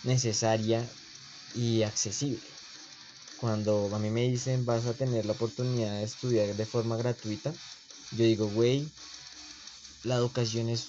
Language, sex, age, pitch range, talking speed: Spanish, male, 20-39, 110-125 Hz, 130 wpm